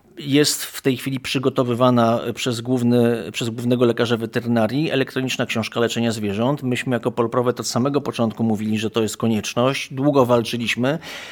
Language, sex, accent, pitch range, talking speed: Polish, male, native, 120-135 Hz, 150 wpm